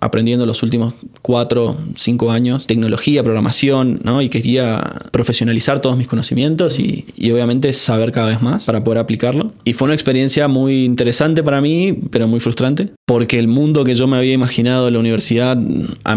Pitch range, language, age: 115-130 Hz, Spanish, 20-39